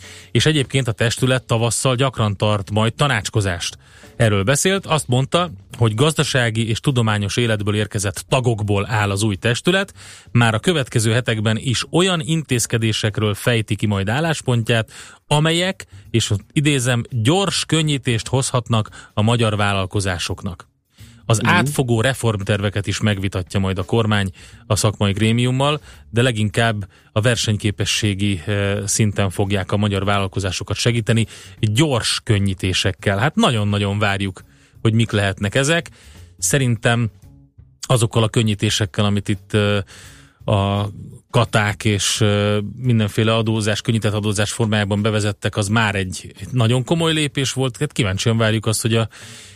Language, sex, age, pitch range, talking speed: Hungarian, male, 30-49, 105-125 Hz, 120 wpm